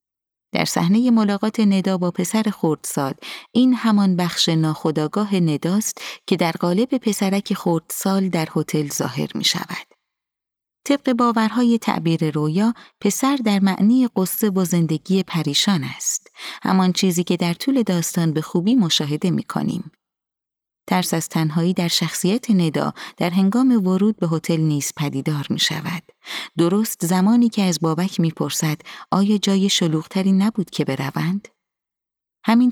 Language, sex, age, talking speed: Persian, female, 30-49, 135 wpm